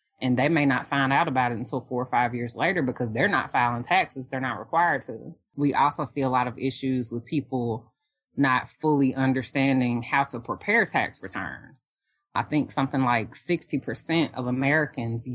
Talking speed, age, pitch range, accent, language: 185 wpm, 20-39, 125-145 Hz, American, English